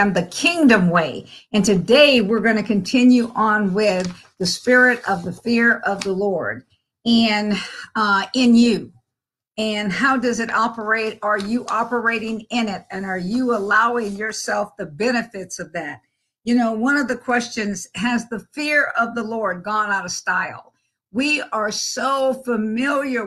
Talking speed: 160 wpm